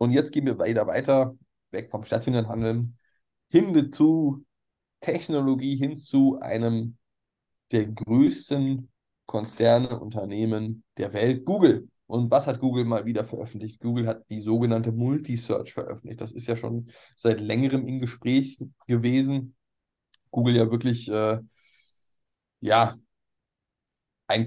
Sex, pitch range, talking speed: male, 110-130 Hz, 125 wpm